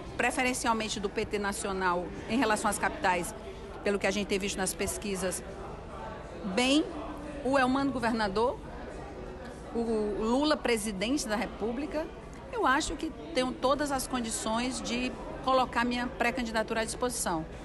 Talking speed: 130 wpm